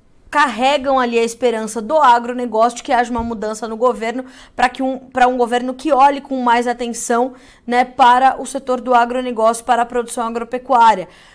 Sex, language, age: female, Portuguese, 20-39